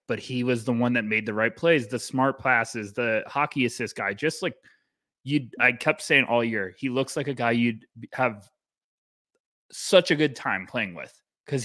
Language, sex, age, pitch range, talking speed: English, male, 20-39, 120-150 Hz, 200 wpm